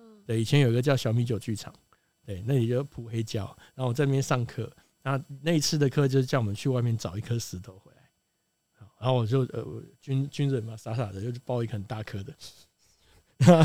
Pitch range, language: 120-150 Hz, Chinese